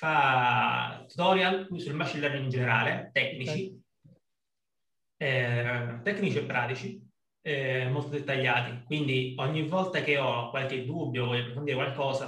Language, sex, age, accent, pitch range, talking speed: Italian, male, 30-49, native, 130-185 Hz, 125 wpm